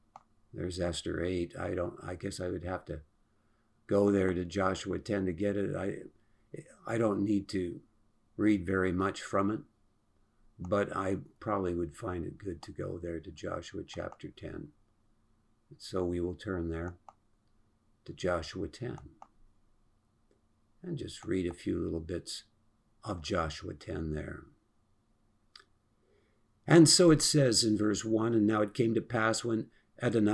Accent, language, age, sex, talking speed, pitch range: American, English, 60-79, male, 150 wpm, 90-110 Hz